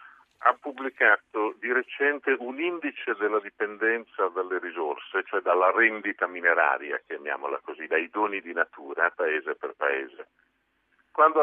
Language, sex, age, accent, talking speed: Italian, male, 50-69, native, 125 wpm